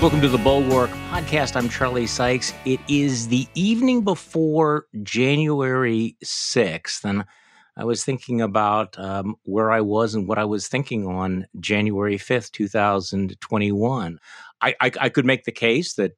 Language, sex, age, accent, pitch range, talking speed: English, male, 50-69, American, 105-135 Hz, 150 wpm